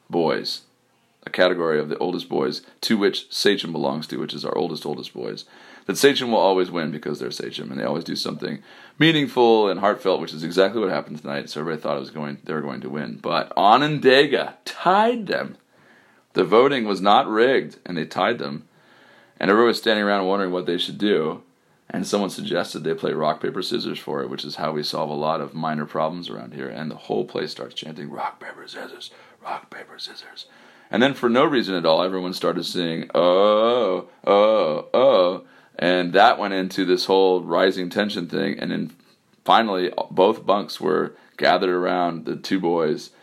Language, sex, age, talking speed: English, male, 30-49, 195 wpm